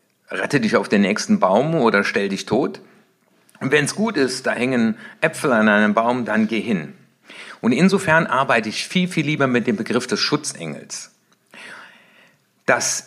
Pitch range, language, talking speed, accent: 130-195 Hz, German, 170 wpm, German